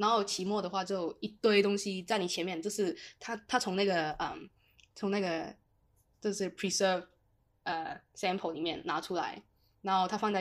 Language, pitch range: Chinese, 180-230 Hz